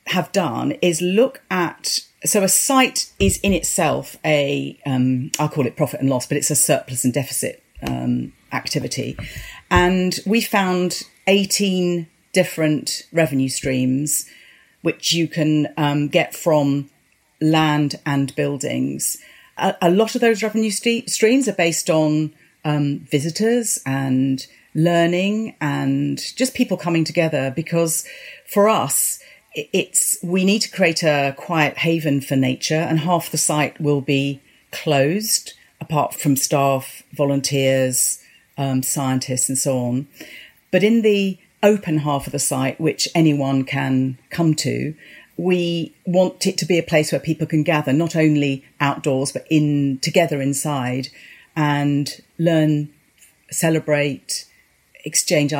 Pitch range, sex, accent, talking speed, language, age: 140-180 Hz, female, British, 135 wpm, English, 40-59